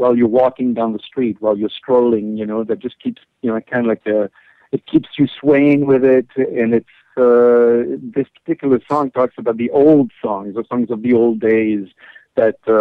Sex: male